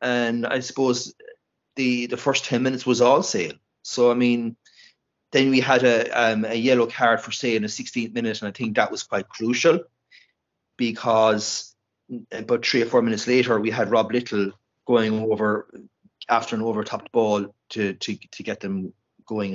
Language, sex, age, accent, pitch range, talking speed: English, male, 30-49, Irish, 105-130 Hz, 180 wpm